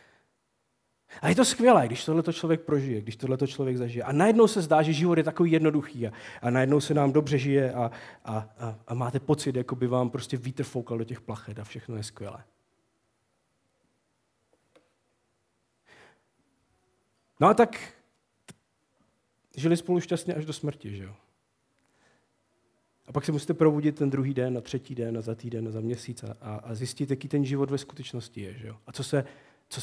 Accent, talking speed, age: native, 180 wpm, 40-59